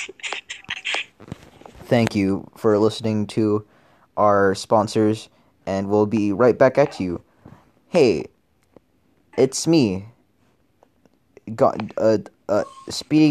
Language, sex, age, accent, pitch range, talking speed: English, male, 20-39, American, 110-140 Hz, 90 wpm